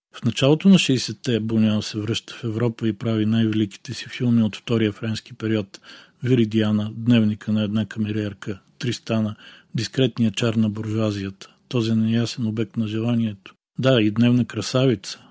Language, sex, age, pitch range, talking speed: Bulgarian, male, 40-59, 110-125 Hz, 145 wpm